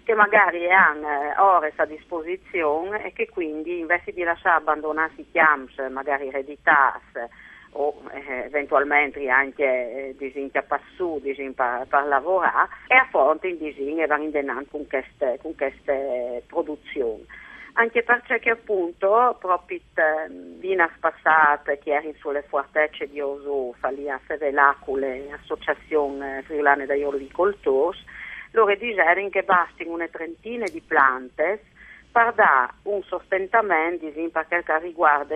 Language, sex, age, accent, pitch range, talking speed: Italian, female, 50-69, native, 145-180 Hz, 120 wpm